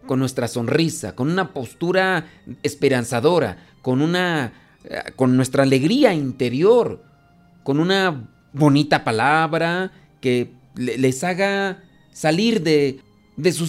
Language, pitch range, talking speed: Spanish, 135-185 Hz, 105 wpm